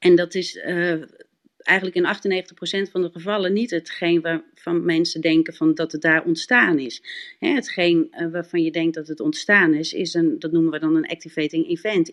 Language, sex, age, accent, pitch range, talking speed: Dutch, female, 40-59, Dutch, 160-210 Hz, 200 wpm